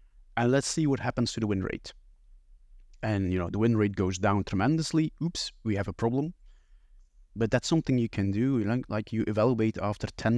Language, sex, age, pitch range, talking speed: English, male, 30-49, 95-120 Hz, 195 wpm